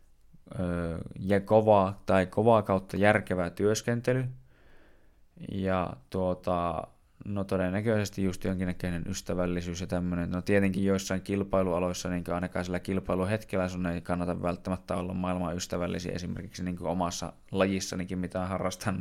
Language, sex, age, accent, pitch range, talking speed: Finnish, male, 20-39, native, 85-100 Hz, 120 wpm